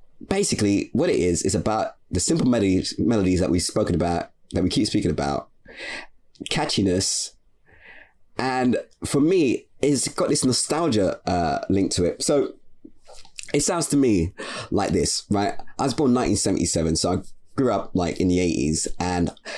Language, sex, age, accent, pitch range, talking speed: English, male, 20-39, British, 95-155 Hz, 160 wpm